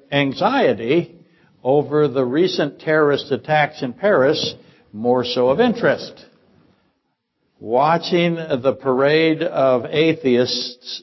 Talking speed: 90 wpm